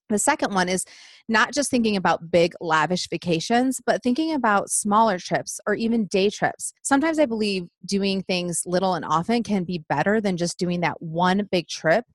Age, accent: 30-49, American